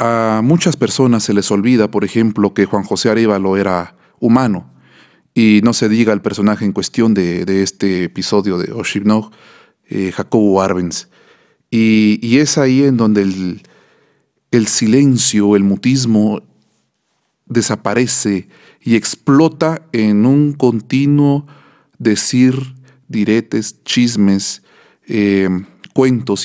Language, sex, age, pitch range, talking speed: Spanish, male, 40-59, 100-125 Hz, 120 wpm